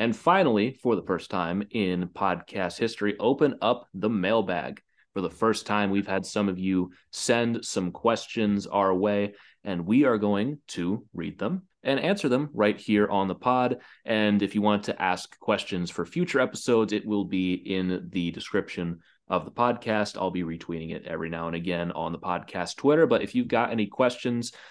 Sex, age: male, 30-49